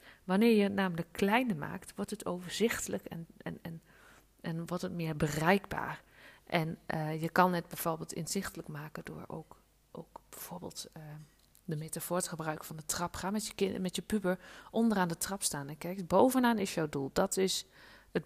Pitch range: 160-195 Hz